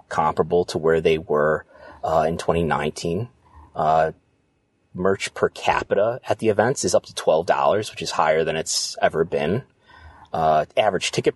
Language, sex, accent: English, male, American